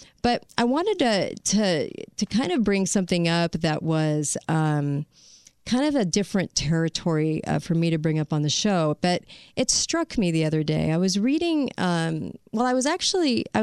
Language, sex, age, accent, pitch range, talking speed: English, female, 40-59, American, 175-235 Hz, 195 wpm